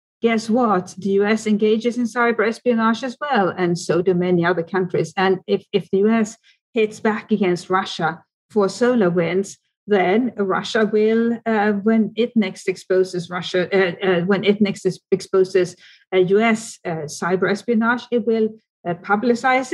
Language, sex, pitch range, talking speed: English, female, 175-220 Hz, 155 wpm